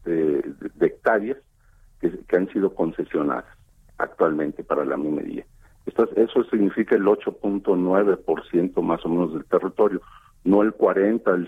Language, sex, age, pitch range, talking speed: Spanish, male, 50-69, 95-115 Hz, 140 wpm